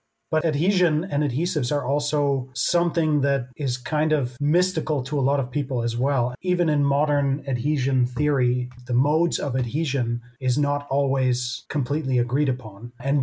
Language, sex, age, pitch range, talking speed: English, male, 30-49, 120-145 Hz, 160 wpm